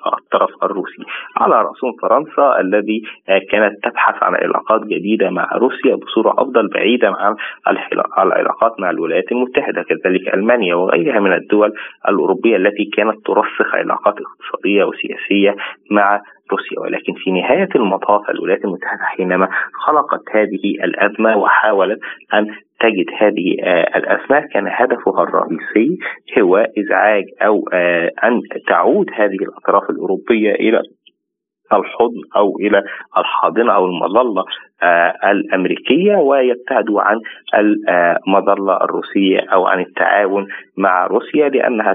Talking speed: 115 wpm